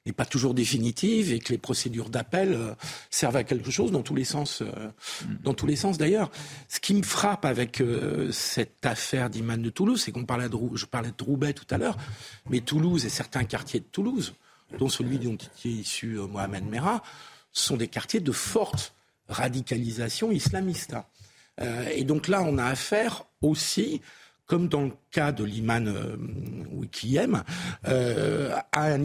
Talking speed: 175 wpm